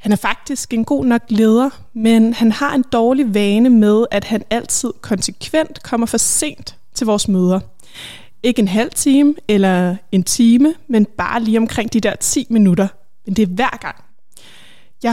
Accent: native